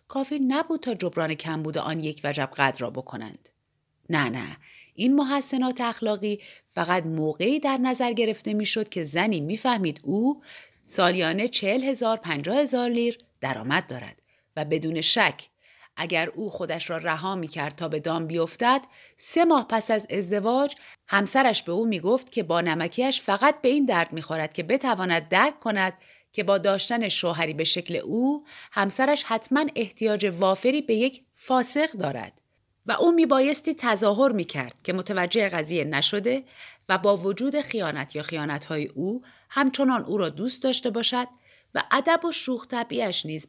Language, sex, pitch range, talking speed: Persian, female, 170-255 Hz, 160 wpm